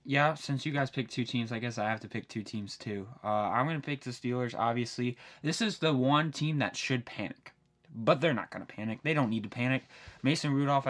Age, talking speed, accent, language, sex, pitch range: 10-29, 250 wpm, American, English, male, 120-145 Hz